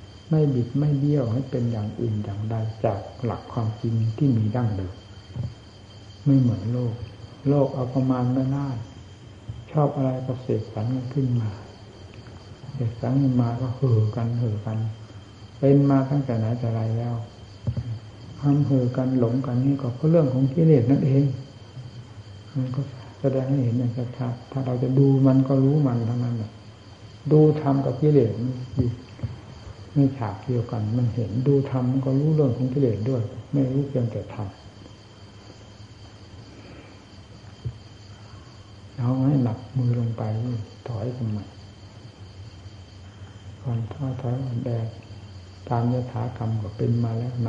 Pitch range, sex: 105-130 Hz, male